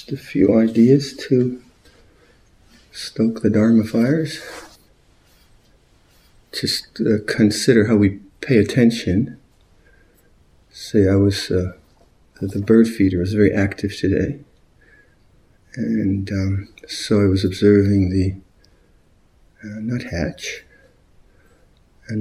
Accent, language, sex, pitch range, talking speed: American, English, male, 95-110 Hz, 100 wpm